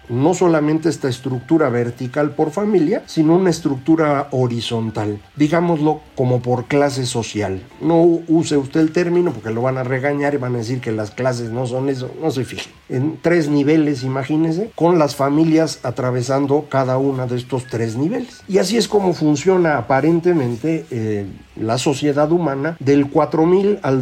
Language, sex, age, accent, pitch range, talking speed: Spanish, male, 50-69, Mexican, 125-165 Hz, 165 wpm